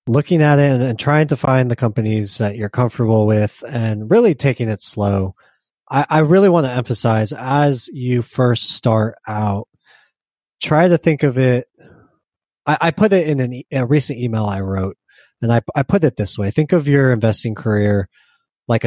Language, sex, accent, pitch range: English, male, American, 110-130 Hz